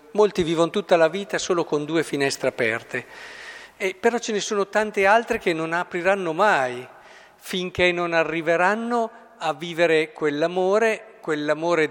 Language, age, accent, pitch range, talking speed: Italian, 50-69, native, 150-200 Hz, 135 wpm